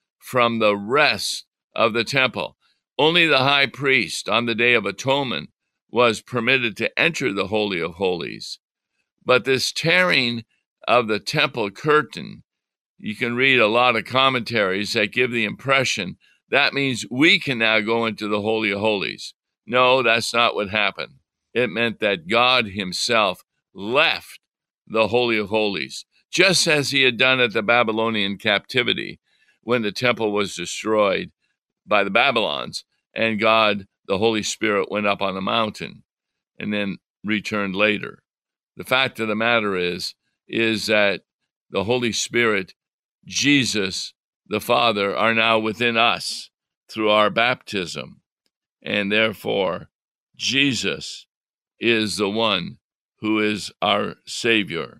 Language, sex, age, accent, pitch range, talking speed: English, male, 60-79, American, 105-125 Hz, 140 wpm